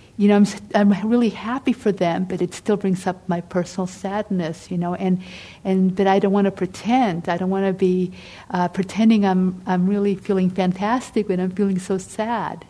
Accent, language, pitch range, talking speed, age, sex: American, English, 180-195 Hz, 205 wpm, 50-69, female